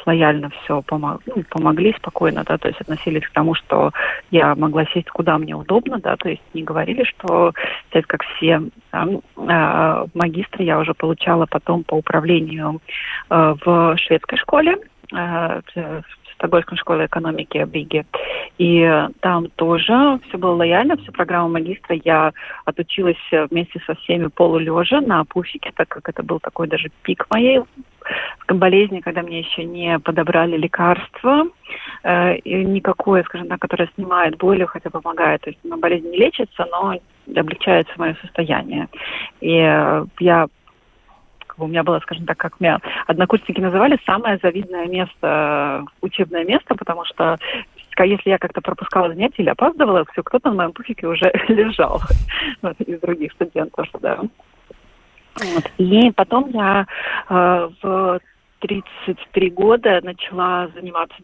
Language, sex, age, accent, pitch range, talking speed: Russian, female, 30-49, native, 165-195 Hz, 135 wpm